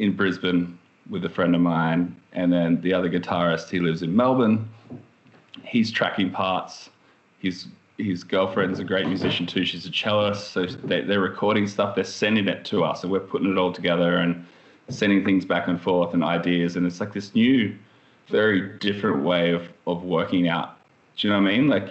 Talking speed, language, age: 195 wpm, English, 20-39